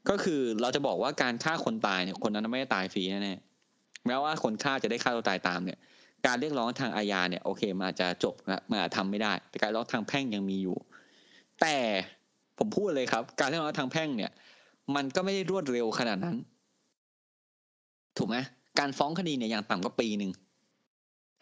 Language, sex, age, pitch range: Thai, male, 20-39, 100-160 Hz